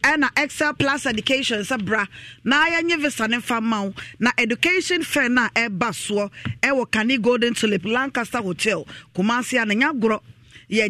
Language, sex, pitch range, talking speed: English, female, 190-245 Hz, 165 wpm